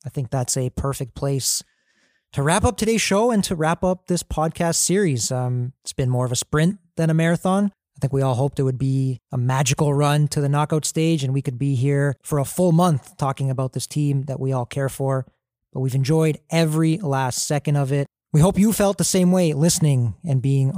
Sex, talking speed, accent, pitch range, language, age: male, 230 wpm, American, 130-160 Hz, English, 30-49